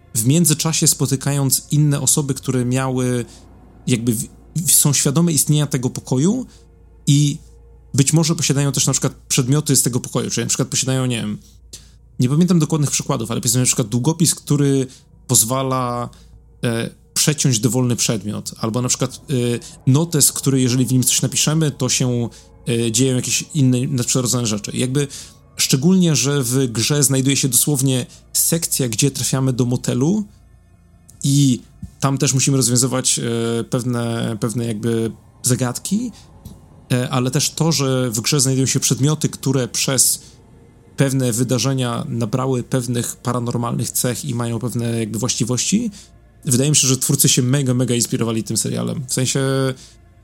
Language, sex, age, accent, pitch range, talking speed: Polish, male, 30-49, native, 120-140 Hz, 145 wpm